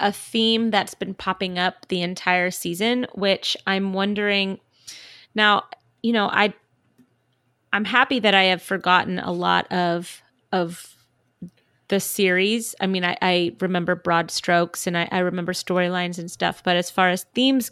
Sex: female